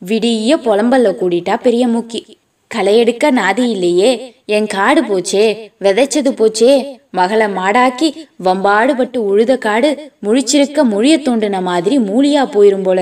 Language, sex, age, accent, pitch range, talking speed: Tamil, female, 20-39, native, 200-270 Hz, 120 wpm